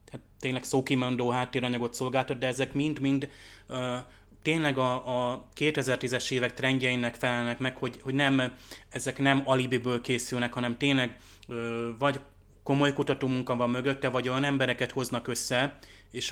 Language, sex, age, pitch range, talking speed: Hungarian, male, 20-39, 120-135 Hz, 140 wpm